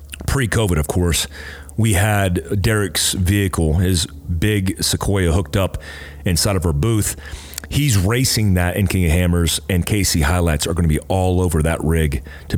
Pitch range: 80-110 Hz